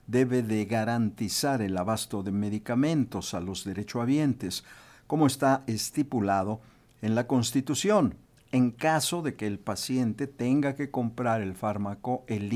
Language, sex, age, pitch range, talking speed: Spanish, male, 50-69, 105-135 Hz, 135 wpm